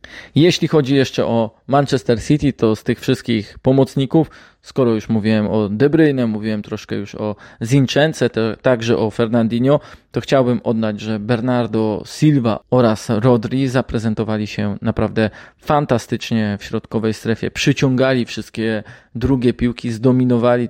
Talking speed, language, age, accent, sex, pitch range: 130 wpm, Polish, 20-39, native, male, 110-130 Hz